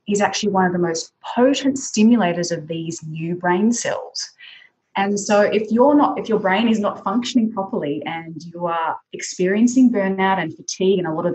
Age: 20-39